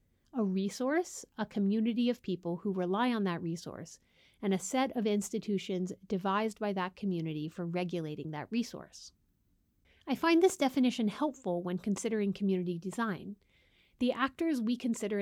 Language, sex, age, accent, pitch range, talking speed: English, female, 30-49, American, 180-230 Hz, 145 wpm